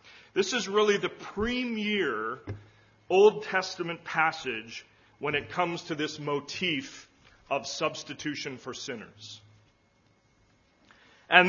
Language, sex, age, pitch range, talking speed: English, male, 40-59, 135-190 Hz, 100 wpm